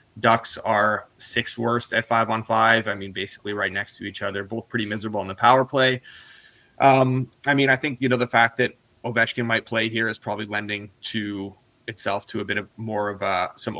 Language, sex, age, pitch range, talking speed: English, male, 20-39, 105-120 Hz, 220 wpm